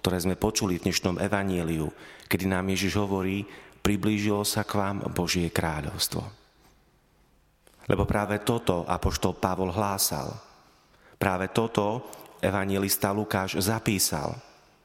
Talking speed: 115 wpm